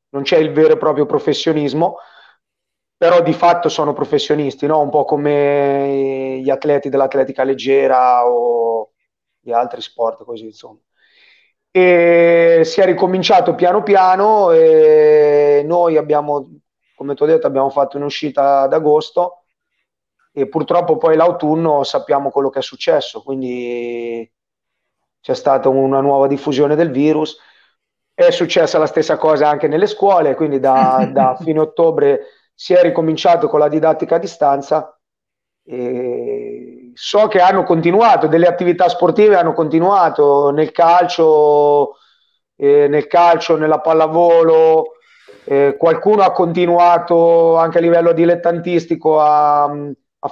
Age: 30-49